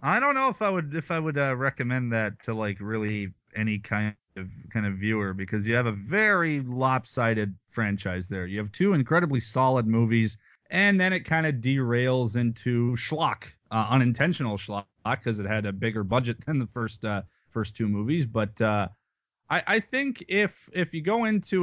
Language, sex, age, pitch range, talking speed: English, male, 30-49, 110-145 Hz, 190 wpm